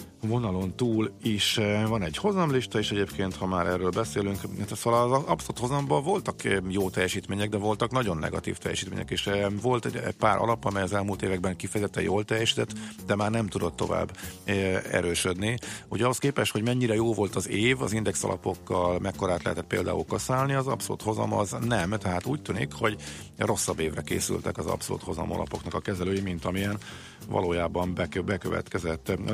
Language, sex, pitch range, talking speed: Hungarian, male, 90-110 Hz, 165 wpm